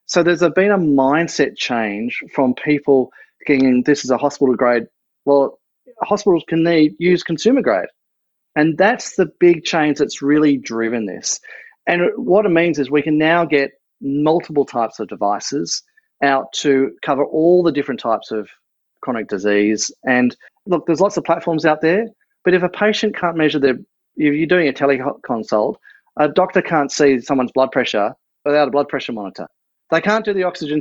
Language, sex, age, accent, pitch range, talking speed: English, male, 30-49, Australian, 135-175 Hz, 175 wpm